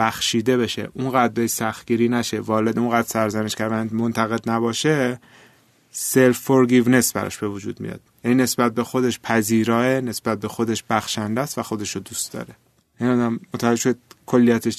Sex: male